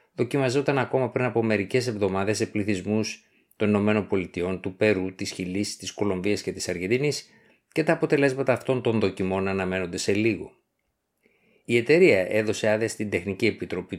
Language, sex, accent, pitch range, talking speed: Greek, male, native, 95-125 Hz, 150 wpm